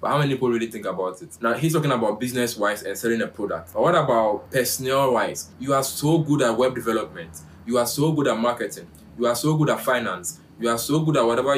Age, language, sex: 20-39, English, male